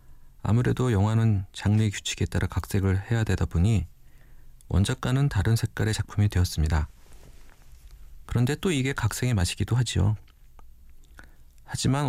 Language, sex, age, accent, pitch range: Korean, male, 40-59, native, 85-115 Hz